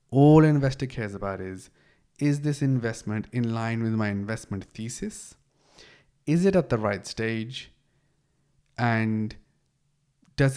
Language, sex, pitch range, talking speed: English, male, 110-135 Hz, 125 wpm